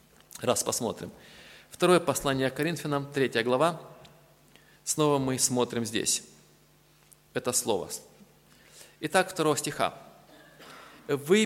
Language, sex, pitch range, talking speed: Russian, male, 125-155 Hz, 90 wpm